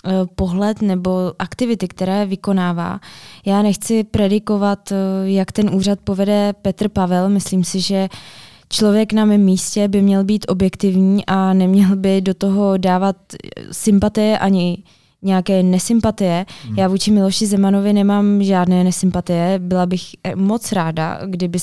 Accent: native